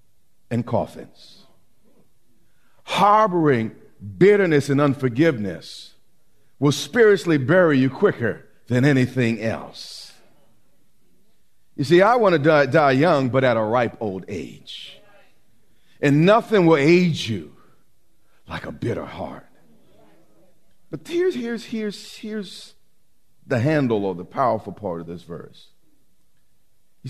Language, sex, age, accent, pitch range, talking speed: English, male, 50-69, American, 120-170 Hz, 115 wpm